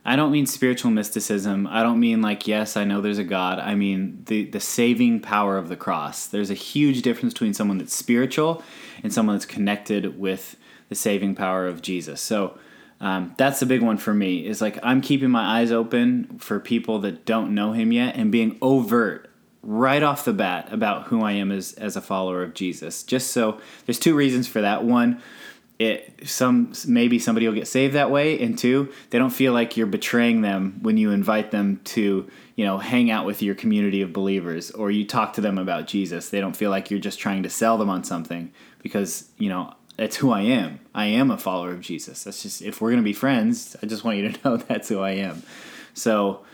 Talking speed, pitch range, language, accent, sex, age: 220 wpm, 100-130 Hz, English, American, male, 20-39